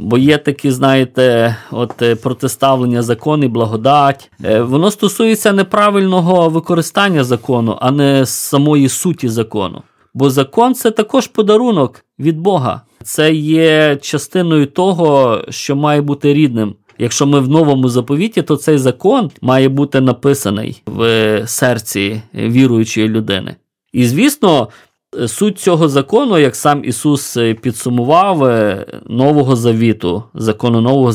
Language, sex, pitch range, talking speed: Ukrainian, male, 120-155 Hz, 120 wpm